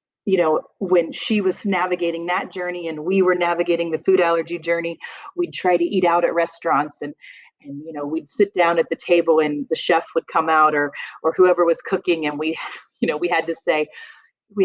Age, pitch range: 30-49, 165-225 Hz